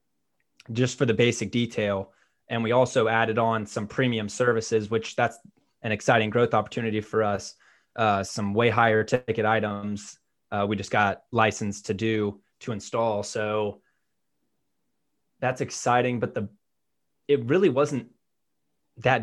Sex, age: male, 20-39